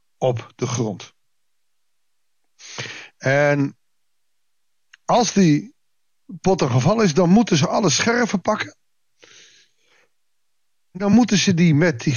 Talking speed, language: 110 wpm, Dutch